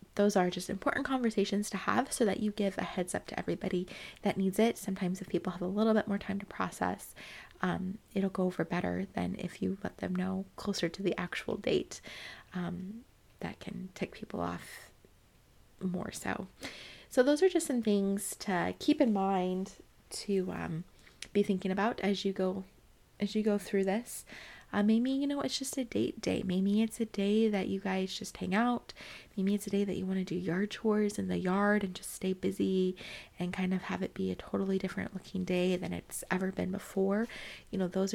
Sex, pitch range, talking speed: female, 185-210 Hz, 205 wpm